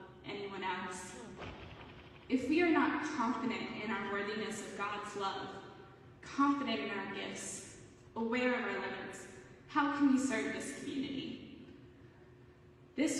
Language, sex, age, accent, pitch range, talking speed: English, female, 10-29, American, 200-245 Hz, 125 wpm